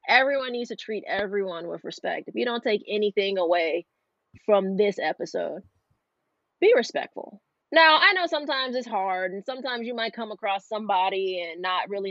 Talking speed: 170 wpm